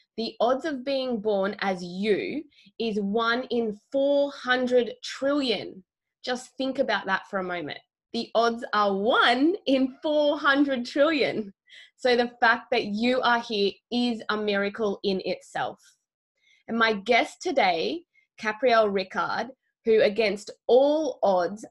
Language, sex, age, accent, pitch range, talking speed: English, female, 20-39, Australian, 195-250 Hz, 135 wpm